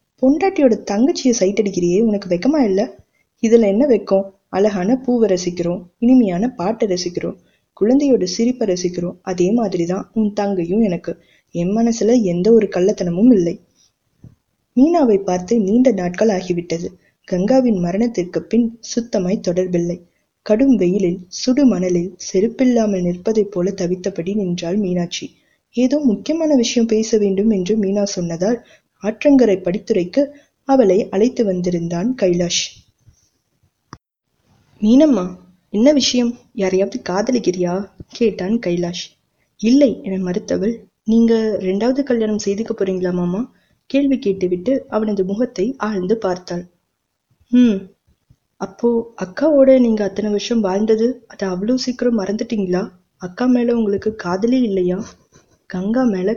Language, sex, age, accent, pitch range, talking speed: Tamil, female, 20-39, native, 185-235 Hz, 105 wpm